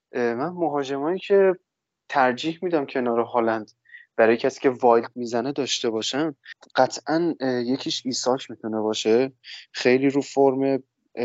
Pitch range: 115-140 Hz